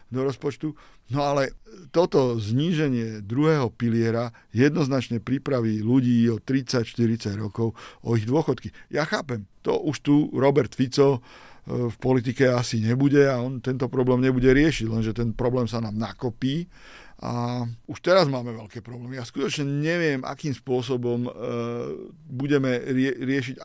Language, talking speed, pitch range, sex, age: Slovak, 130 wpm, 120-140 Hz, male, 50-69